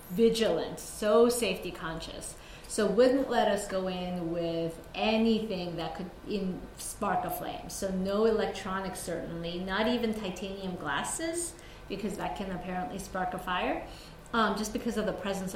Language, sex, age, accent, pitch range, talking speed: English, female, 30-49, American, 185-225 Hz, 150 wpm